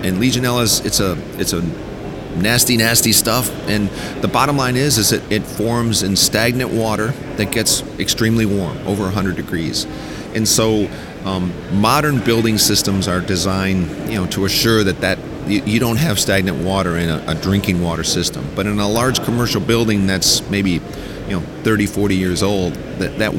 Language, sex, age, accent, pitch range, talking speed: English, male, 40-59, American, 95-115 Hz, 175 wpm